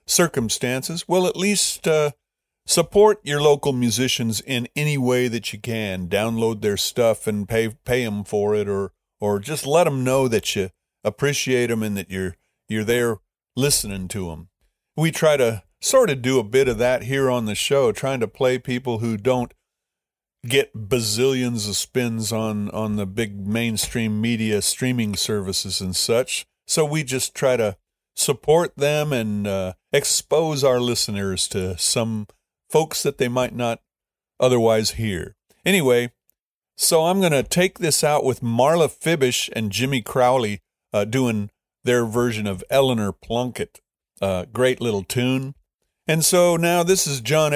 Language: English